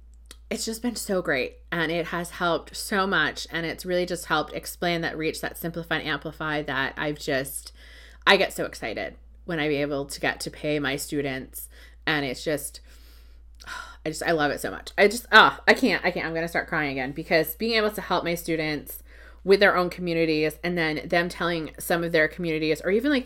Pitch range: 150-185 Hz